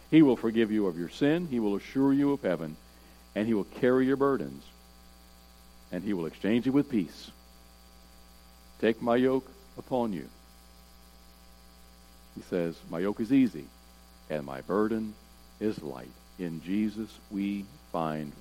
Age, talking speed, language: 60-79, 150 wpm, English